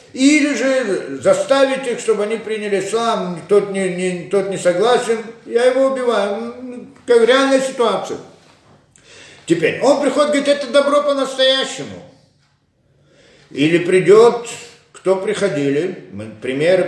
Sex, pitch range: male, 160-260 Hz